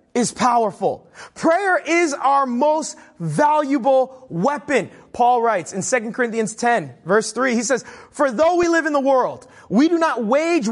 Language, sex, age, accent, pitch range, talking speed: English, male, 30-49, American, 180-265 Hz, 160 wpm